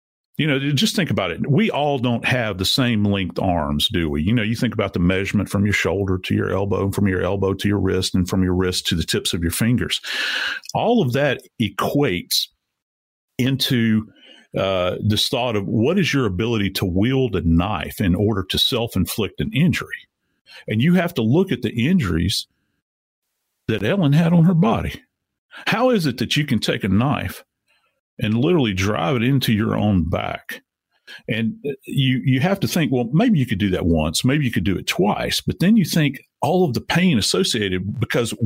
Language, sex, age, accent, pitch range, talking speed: English, male, 50-69, American, 100-135 Hz, 200 wpm